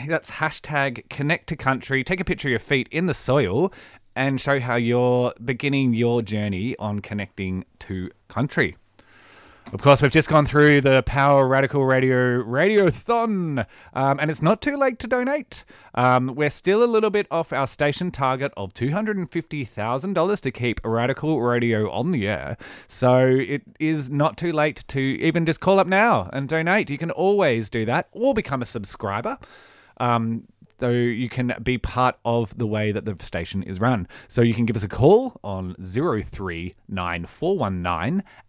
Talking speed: 170 wpm